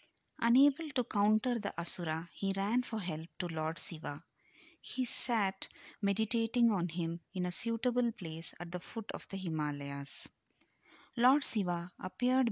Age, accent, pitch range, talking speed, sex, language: 30-49, native, 160-210 Hz, 145 wpm, female, Tamil